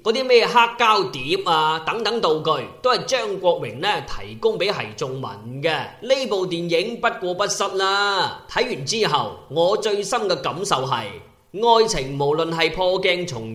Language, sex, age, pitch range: Chinese, male, 20-39, 155-225 Hz